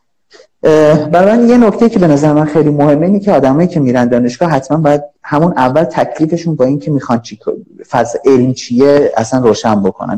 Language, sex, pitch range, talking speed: Persian, male, 125-175 Hz, 190 wpm